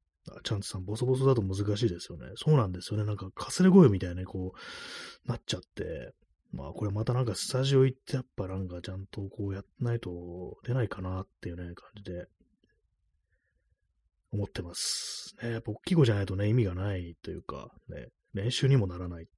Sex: male